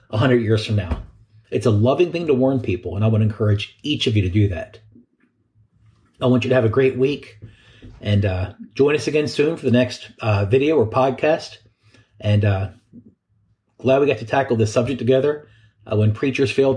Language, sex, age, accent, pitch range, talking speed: English, male, 40-59, American, 105-125 Hz, 200 wpm